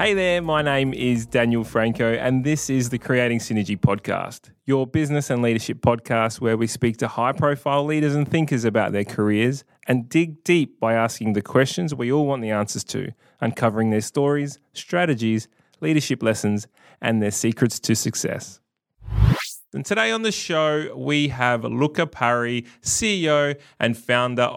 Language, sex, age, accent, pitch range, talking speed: English, male, 20-39, Australian, 115-150 Hz, 160 wpm